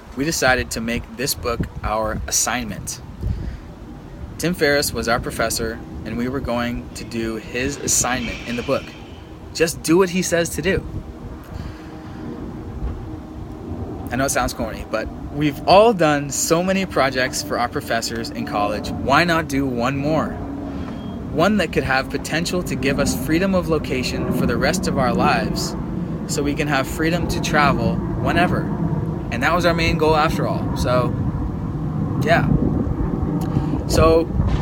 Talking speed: 155 wpm